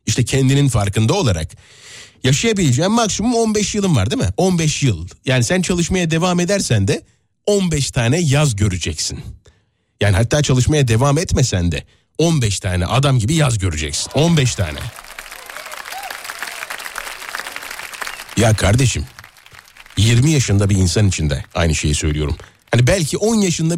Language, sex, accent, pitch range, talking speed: Turkish, male, native, 100-145 Hz, 130 wpm